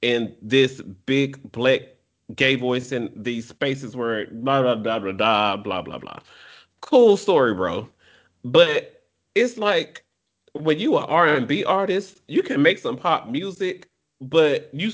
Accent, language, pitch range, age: American, English, 130-205 Hz, 30-49